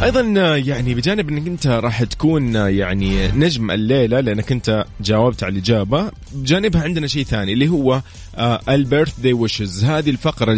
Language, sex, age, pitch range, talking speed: Arabic, male, 20-39, 110-155 Hz, 145 wpm